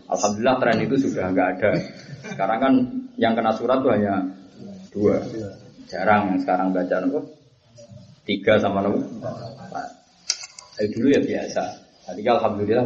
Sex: male